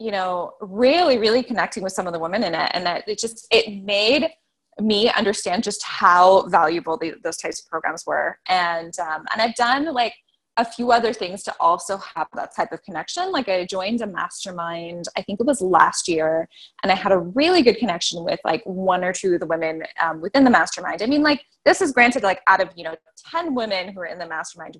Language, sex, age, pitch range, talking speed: English, female, 20-39, 180-255 Hz, 225 wpm